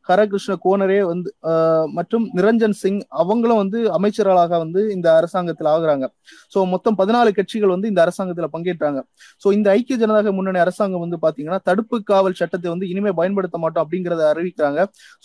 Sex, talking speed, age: male, 150 wpm, 20-39